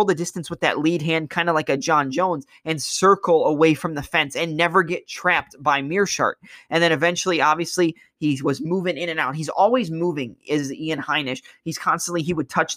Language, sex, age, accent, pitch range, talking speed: English, male, 20-39, American, 150-180 Hz, 210 wpm